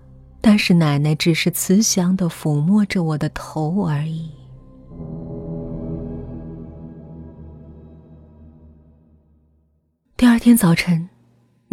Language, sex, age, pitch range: Chinese, female, 30-49, 165-240 Hz